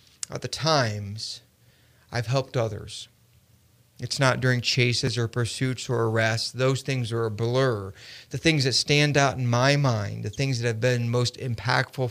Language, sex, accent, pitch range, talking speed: English, male, American, 115-130 Hz, 170 wpm